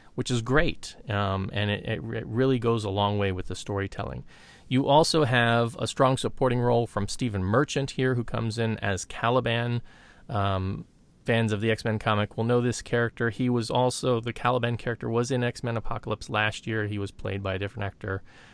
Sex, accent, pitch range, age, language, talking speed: male, American, 100-125 Hz, 30-49, English, 195 wpm